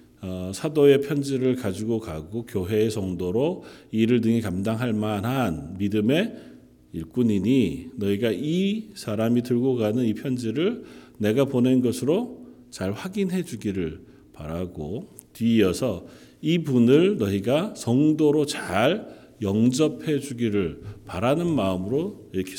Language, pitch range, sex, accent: Korean, 90-125 Hz, male, native